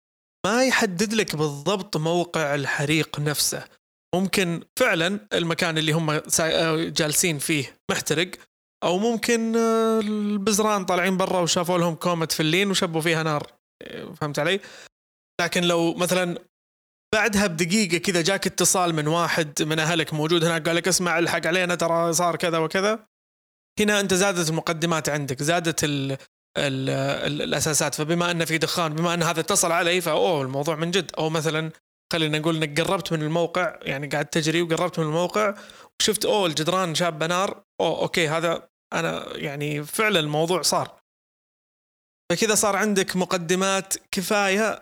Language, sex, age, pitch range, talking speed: Arabic, male, 20-39, 160-190 Hz, 140 wpm